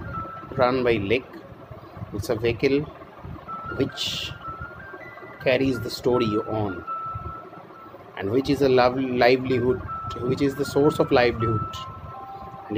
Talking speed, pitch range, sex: 115 wpm, 125-155 Hz, male